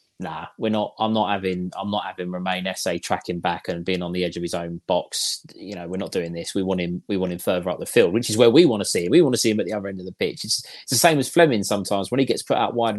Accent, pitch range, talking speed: British, 90-125 Hz, 330 wpm